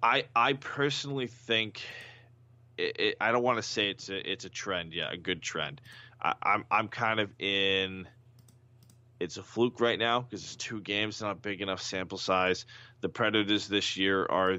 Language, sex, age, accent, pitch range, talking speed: English, male, 20-39, American, 95-120 Hz, 185 wpm